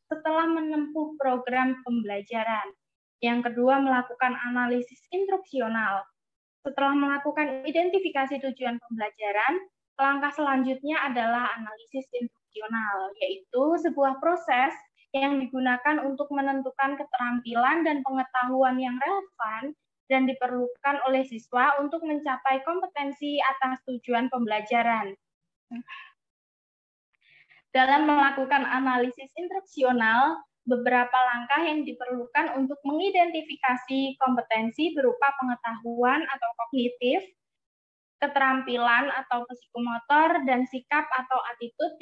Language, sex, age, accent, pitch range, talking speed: Indonesian, female, 20-39, native, 240-285 Hz, 90 wpm